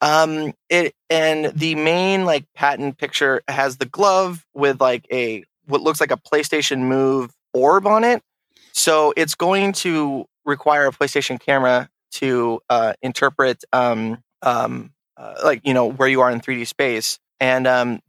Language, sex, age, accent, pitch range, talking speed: English, male, 20-39, American, 125-155 Hz, 160 wpm